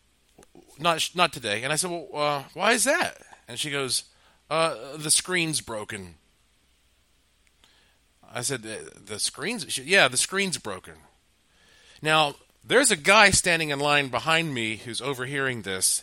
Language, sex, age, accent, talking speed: English, male, 40-59, American, 145 wpm